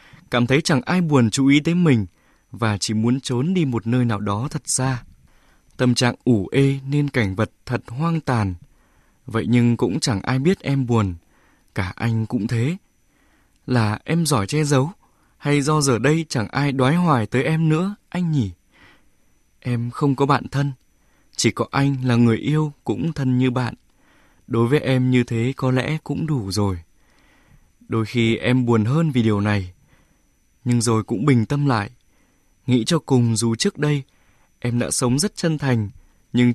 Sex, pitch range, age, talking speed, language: male, 110-140 Hz, 20-39, 185 wpm, Vietnamese